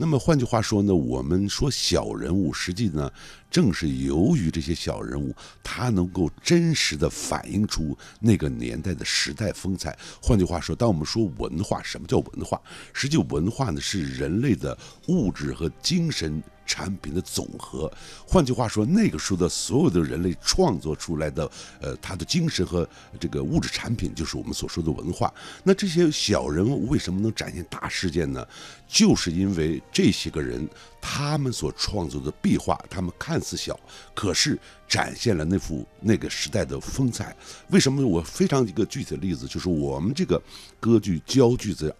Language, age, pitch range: Chinese, 60-79, 80-125 Hz